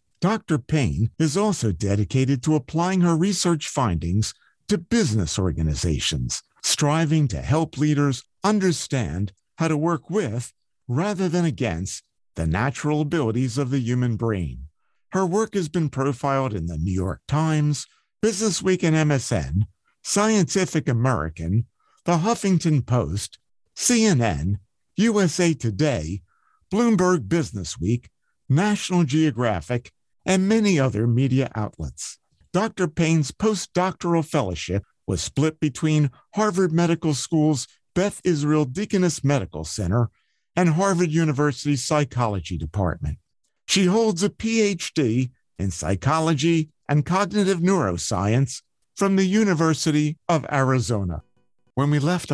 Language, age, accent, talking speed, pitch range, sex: English, 50-69, American, 115 wpm, 110-175 Hz, male